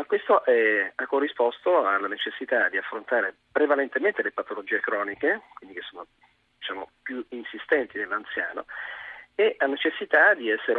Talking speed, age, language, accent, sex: 135 wpm, 40-59, Italian, native, male